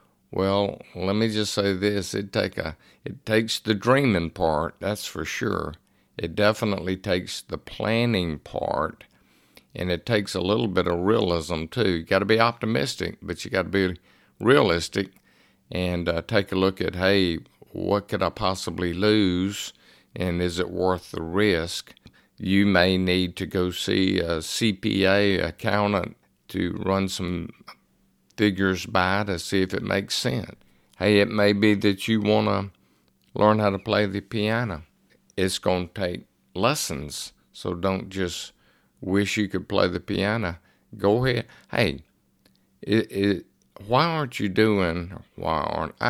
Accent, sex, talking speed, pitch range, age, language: American, male, 155 wpm, 90-105 Hz, 50-69, English